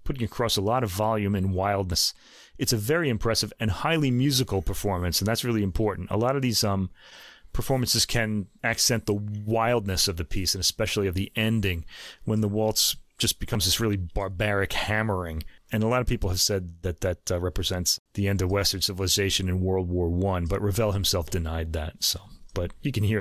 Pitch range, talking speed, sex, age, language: 100-155 Hz, 200 wpm, male, 30-49, English